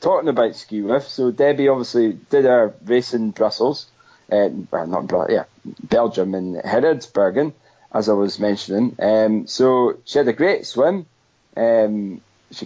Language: English